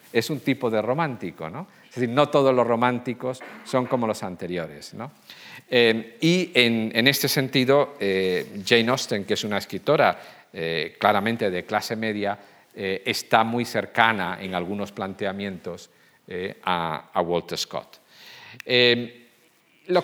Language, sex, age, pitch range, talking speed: Spanish, male, 50-69, 110-140 Hz, 145 wpm